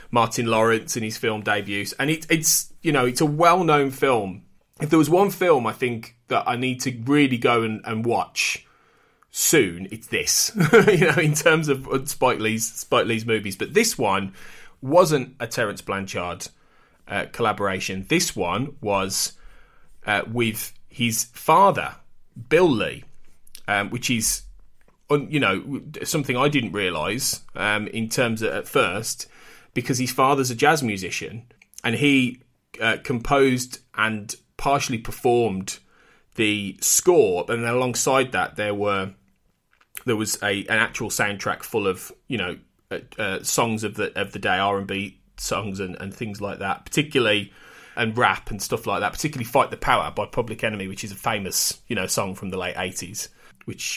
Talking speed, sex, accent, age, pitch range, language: 165 wpm, male, British, 20-39, 100-135 Hz, English